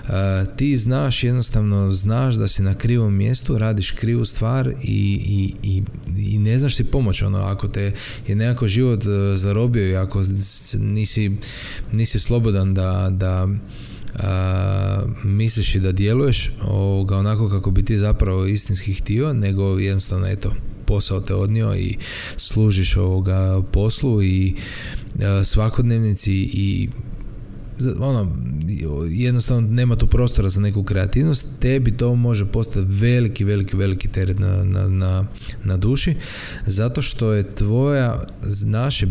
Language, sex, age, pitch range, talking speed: Croatian, male, 20-39, 100-115 Hz, 135 wpm